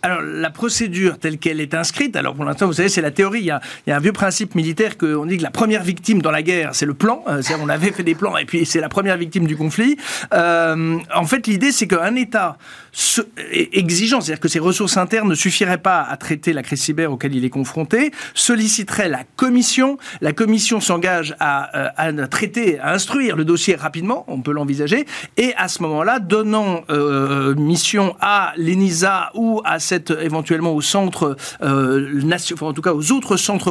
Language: French